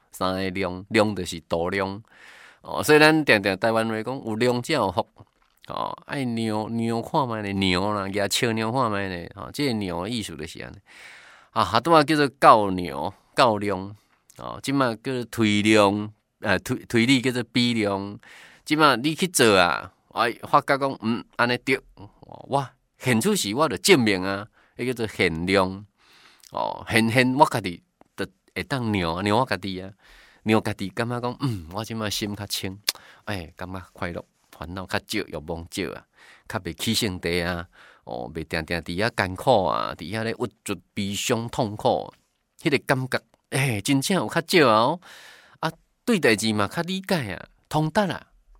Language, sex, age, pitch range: Chinese, male, 20-39, 95-125 Hz